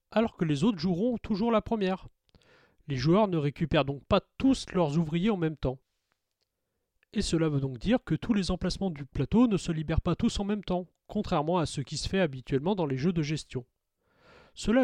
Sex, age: male, 30-49